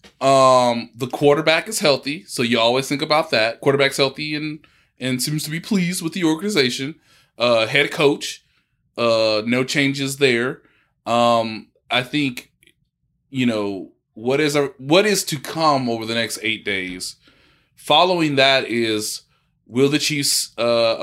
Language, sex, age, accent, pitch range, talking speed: English, male, 20-39, American, 105-140 Hz, 150 wpm